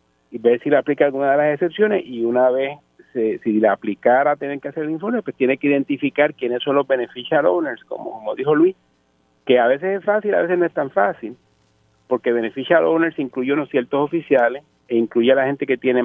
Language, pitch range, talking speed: Spanish, 115-145 Hz, 215 wpm